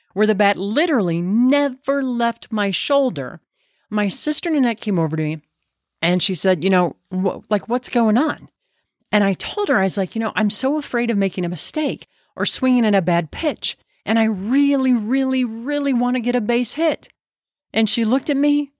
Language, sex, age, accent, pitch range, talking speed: English, female, 40-59, American, 170-245 Hz, 200 wpm